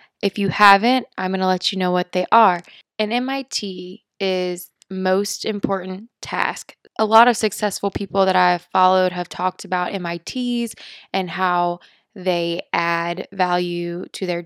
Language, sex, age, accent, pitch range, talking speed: English, female, 20-39, American, 180-210 Hz, 155 wpm